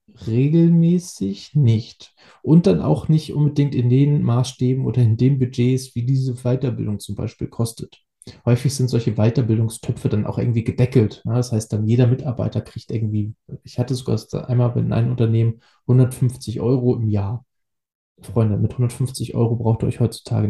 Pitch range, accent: 115-135 Hz, German